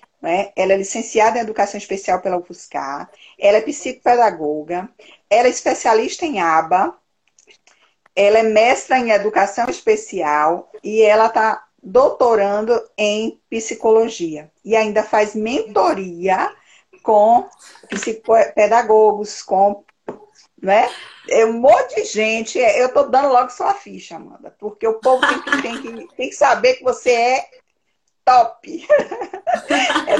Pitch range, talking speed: 195-260 Hz, 125 wpm